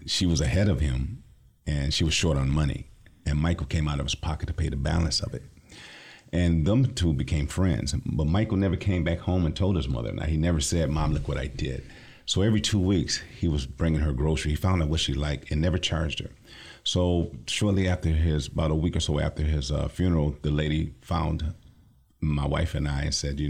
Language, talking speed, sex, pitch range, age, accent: English, 225 wpm, male, 75-85 Hz, 50-69, American